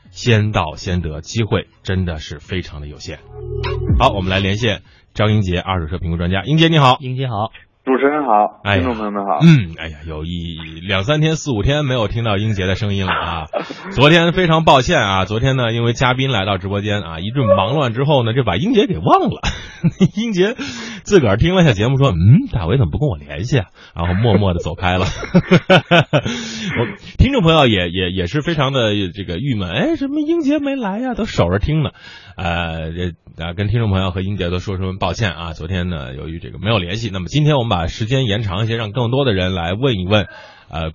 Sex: male